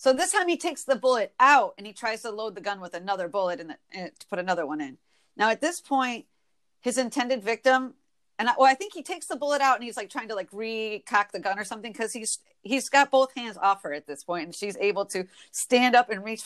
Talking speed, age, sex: 260 wpm, 40-59, female